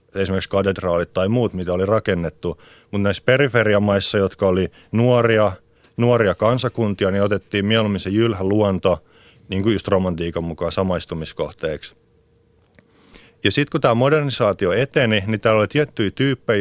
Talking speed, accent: 135 wpm, native